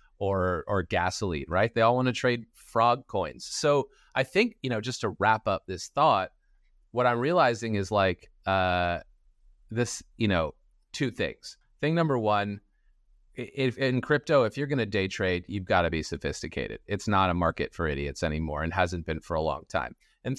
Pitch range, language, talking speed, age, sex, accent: 90-115 Hz, English, 190 wpm, 30-49, male, American